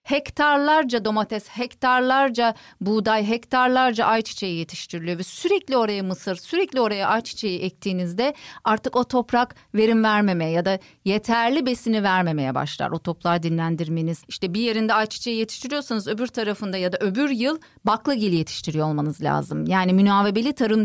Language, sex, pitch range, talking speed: Turkish, female, 185-255 Hz, 135 wpm